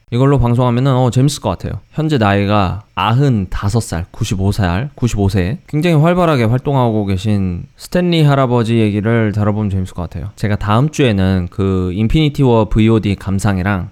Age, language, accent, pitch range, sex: 20-39, Korean, native, 100-125 Hz, male